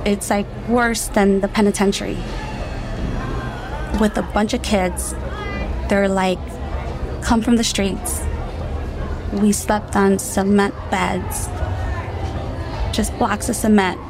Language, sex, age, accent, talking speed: English, female, 20-39, American, 110 wpm